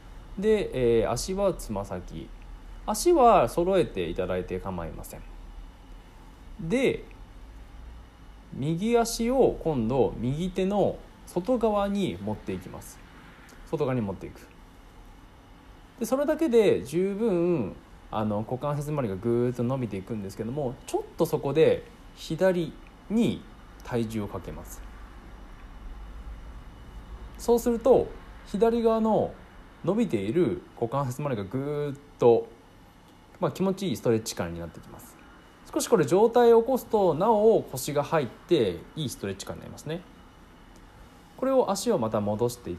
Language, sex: Japanese, male